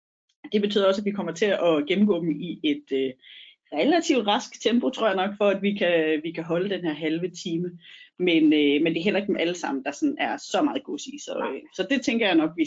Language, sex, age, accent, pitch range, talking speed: Danish, female, 30-49, native, 165-240 Hz, 255 wpm